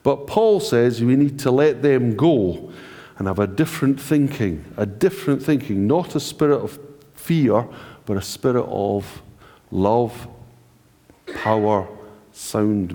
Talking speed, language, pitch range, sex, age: 135 wpm, English, 105-145 Hz, male, 50-69